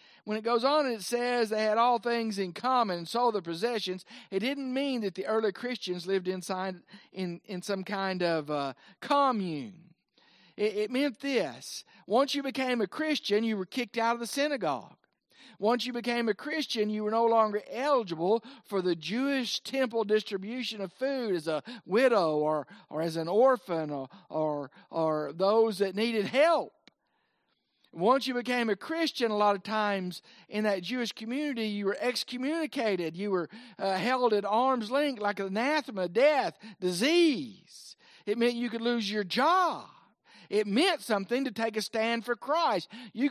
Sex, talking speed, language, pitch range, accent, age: male, 170 wpm, English, 195-255 Hz, American, 50-69